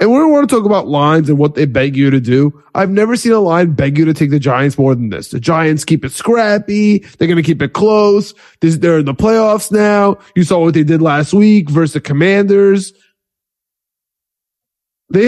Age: 20-39